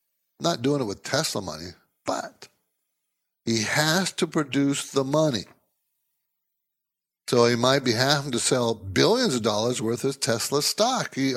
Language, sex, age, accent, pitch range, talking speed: English, male, 60-79, American, 115-160 Hz, 150 wpm